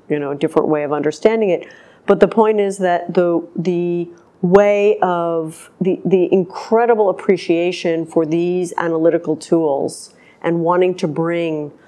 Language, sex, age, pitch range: English, female, 50-69, 170-220 Hz